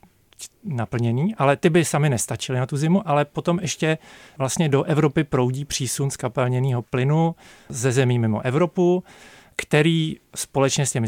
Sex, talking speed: male, 150 wpm